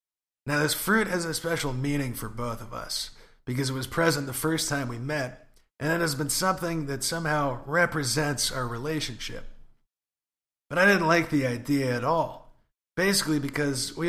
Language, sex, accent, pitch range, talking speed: English, male, American, 125-165 Hz, 175 wpm